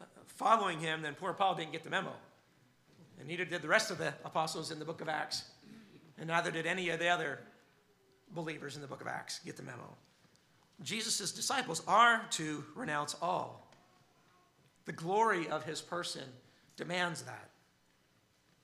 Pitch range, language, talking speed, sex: 155-195 Hz, English, 165 wpm, male